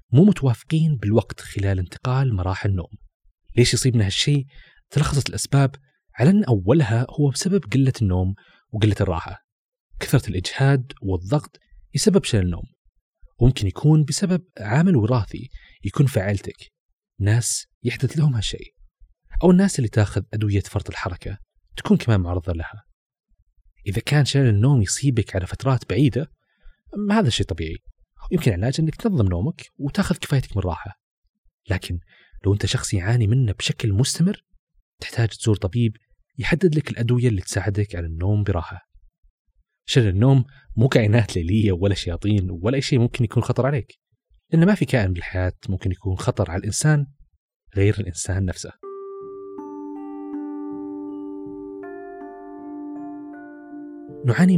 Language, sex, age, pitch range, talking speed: Arabic, male, 30-49, 95-140 Hz, 130 wpm